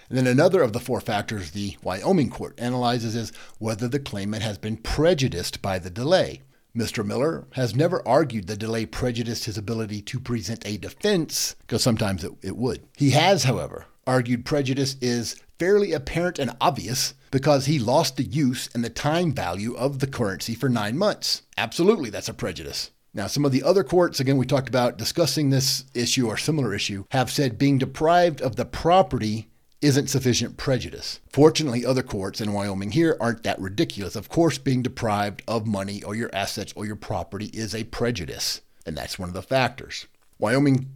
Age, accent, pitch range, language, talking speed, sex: 50-69, American, 110-140 Hz, English, 185 wpm, male